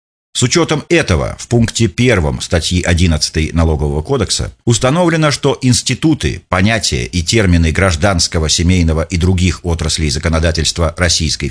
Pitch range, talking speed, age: 85-125 Hz, 120 wpm, 40-59